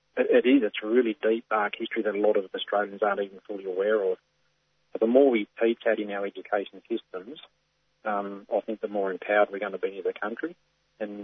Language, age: English, 30-49